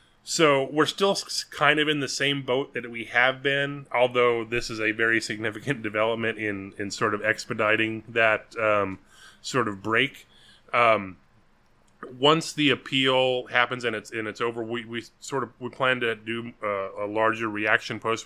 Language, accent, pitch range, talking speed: English, American, 105-130 Hz, 175 wpm